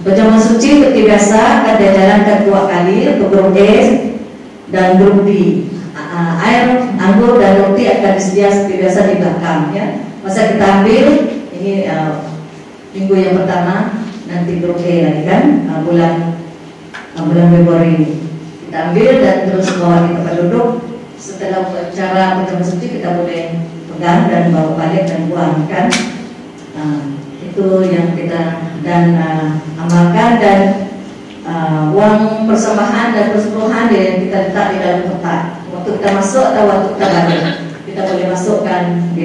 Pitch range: 170-215 Hz